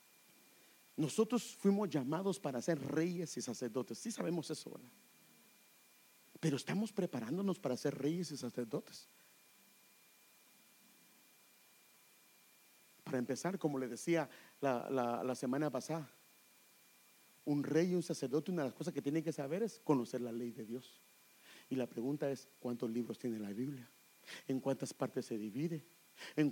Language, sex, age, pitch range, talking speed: English, male, 50-69, 130-170 Hz, 140 wpm